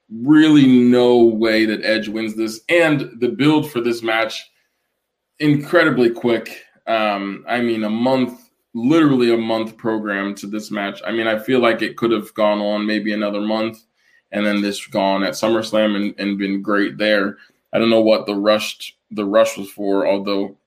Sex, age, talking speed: male, 20-39, 180 wpm